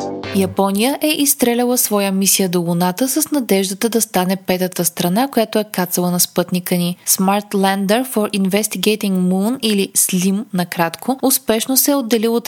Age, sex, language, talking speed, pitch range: 20-39, female, Bulgarian, 155 wpm, 180-235 Hz